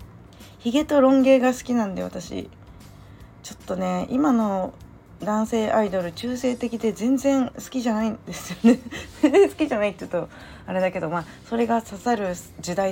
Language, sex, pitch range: Japanese, female, 180-245 Hz